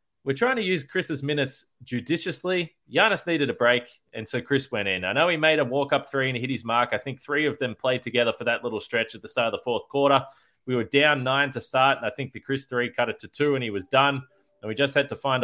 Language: English